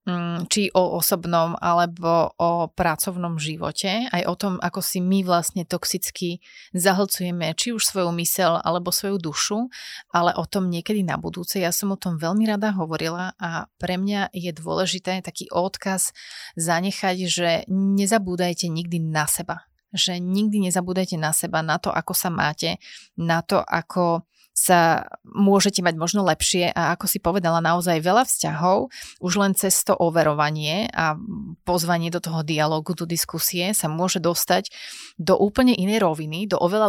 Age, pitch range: 30-49, 165-190 Hz